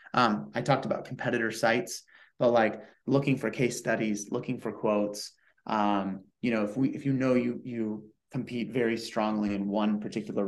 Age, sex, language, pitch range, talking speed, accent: 30-49, male, English, 105-125 Hz, 180 wpm, American